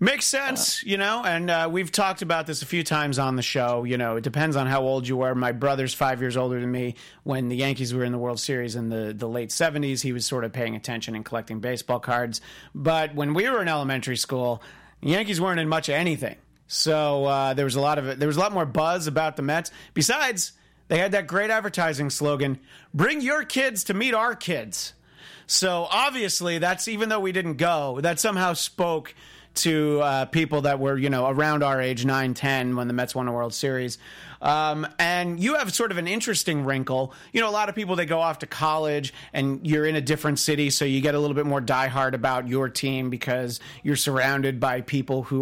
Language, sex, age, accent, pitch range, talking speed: English, male, 40-59, American, 130-170 Hz, 230 wpm